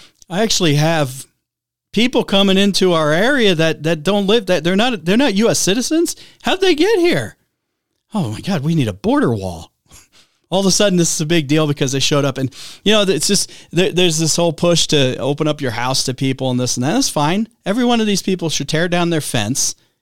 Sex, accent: male, American